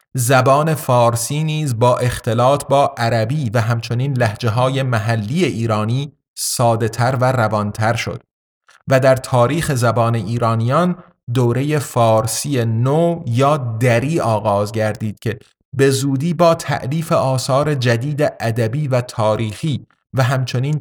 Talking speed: 120 wpm